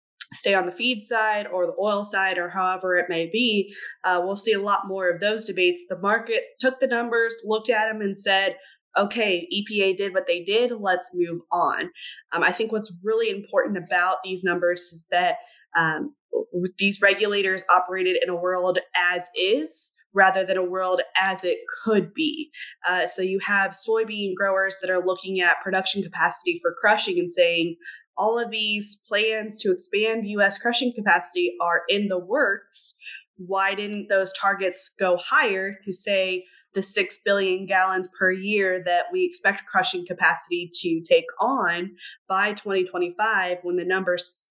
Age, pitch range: 20-39, 180-225 Hz